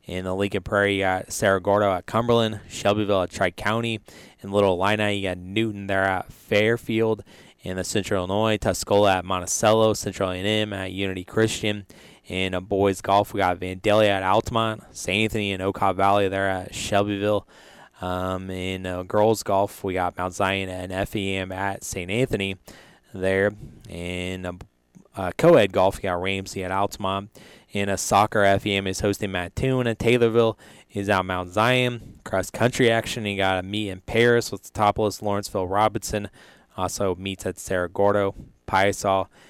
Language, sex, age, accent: English, male, 20-39, American